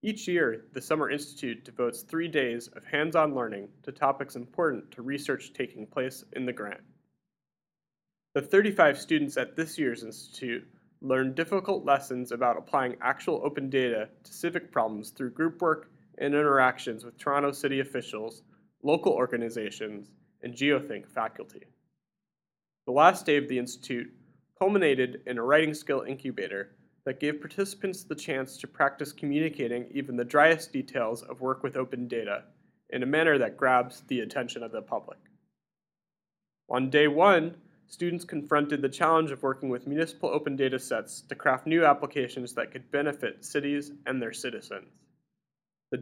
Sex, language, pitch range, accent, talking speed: male, English, 125-155 Hz, American, 155 wpm